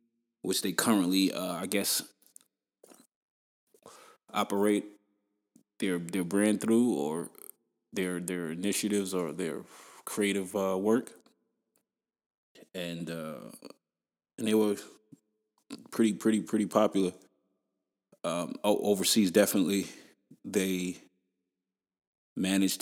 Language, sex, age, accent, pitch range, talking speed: English, male, 20-39, American, 90-105 Hz, 90 wpm